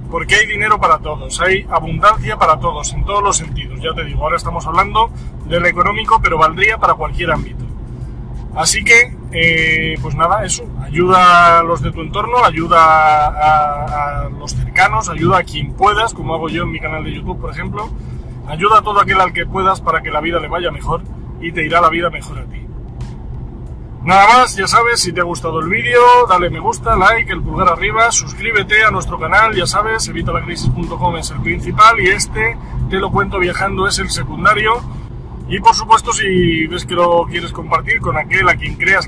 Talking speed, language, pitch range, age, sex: 200 wpm, Spanish, 150-190 Hz, 30-49, male